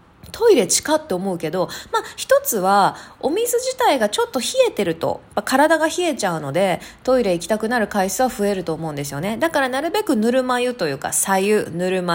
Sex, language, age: female, Japanese, 20-39